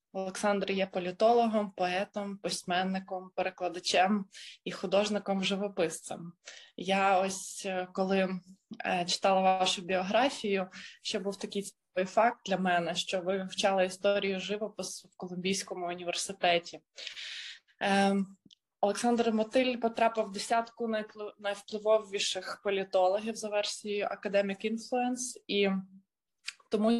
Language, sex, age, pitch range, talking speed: Ukrainian, female, 20-39, 190-220 Hz, 95 wpm